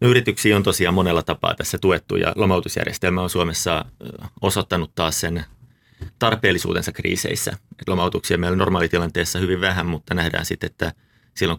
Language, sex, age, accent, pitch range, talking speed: Finnish, male, 30-49, native, 85-110 Hz, 150 wpm